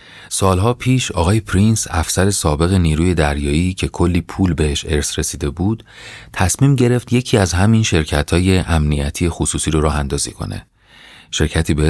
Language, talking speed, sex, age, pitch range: Persian, 140 wpm, male, 30-49, 75-100 Hz